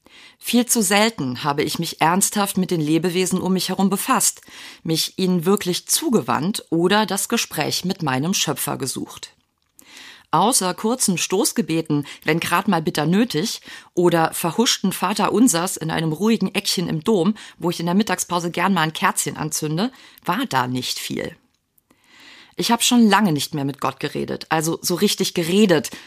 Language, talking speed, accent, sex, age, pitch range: German, 160 wpm, German, female, 40-59, 155-205 Hz